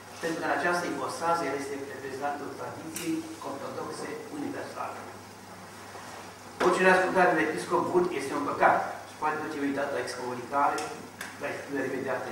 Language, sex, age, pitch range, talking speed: Romanian, male, 60-79, 140-165 Hz, 125 wpm